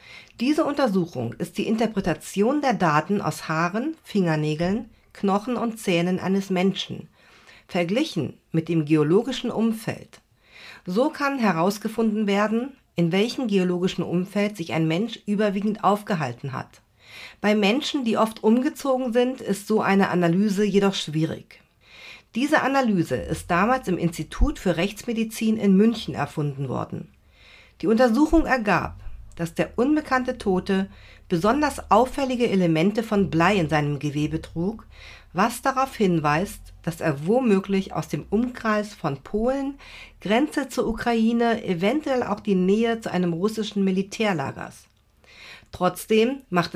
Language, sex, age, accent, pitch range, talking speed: German, female, 50-69, German, 170-230 Hz, 125 wpm